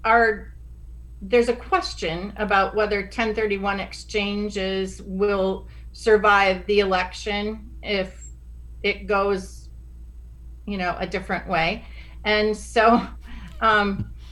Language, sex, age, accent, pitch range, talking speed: English, female, 40-59, American, 190-225 Hz, 95 wpm